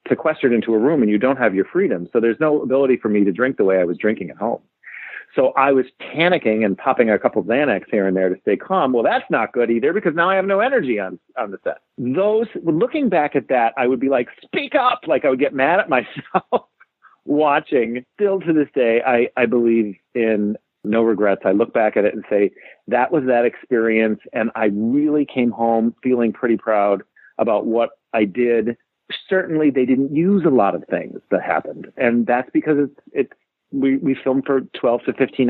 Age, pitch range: 40-59, 115-150 Hz